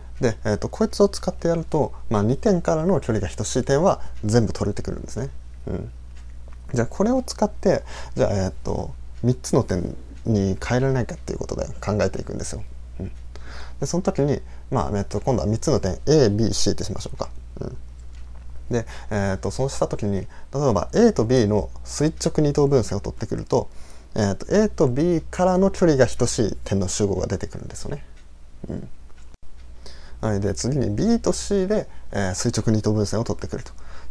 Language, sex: Japanese, male